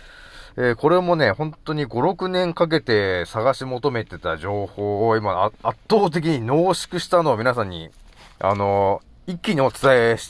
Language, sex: Japanese, male